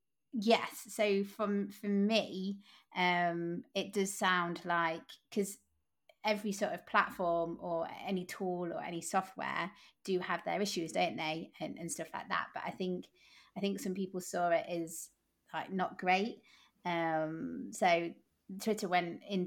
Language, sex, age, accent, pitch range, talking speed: English, female, 30-49, British, 170-195 Hz, 155 wpm